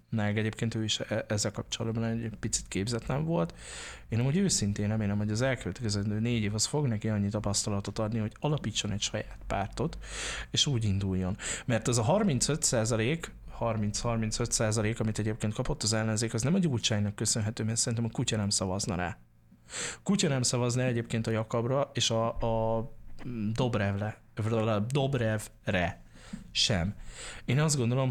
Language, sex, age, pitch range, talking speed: Hungarian, male, 20-39, 110-125 Hz, 145 wpm